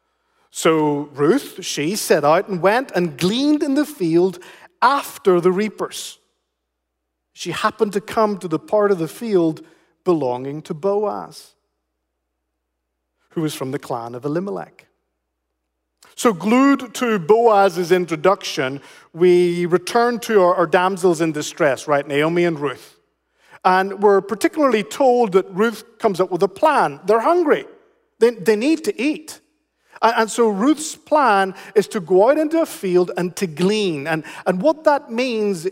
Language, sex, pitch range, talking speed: English, male, 165-235 Hz, 150 wpm